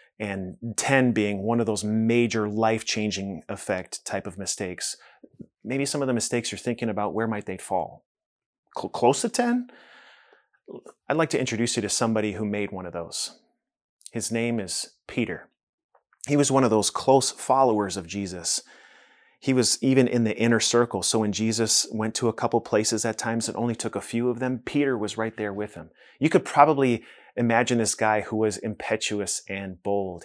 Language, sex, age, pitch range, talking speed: English, male, 30-49, 105-130 Hz, 185 wpm